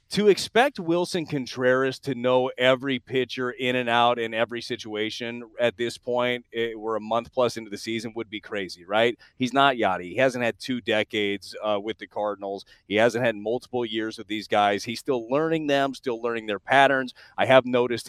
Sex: male